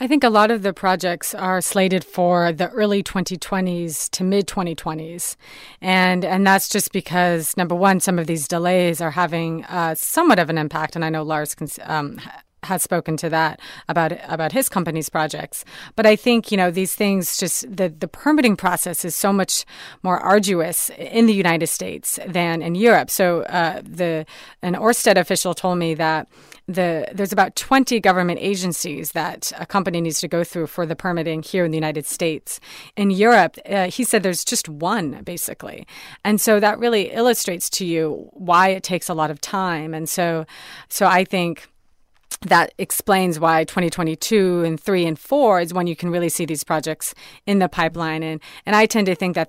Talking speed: 195 wpm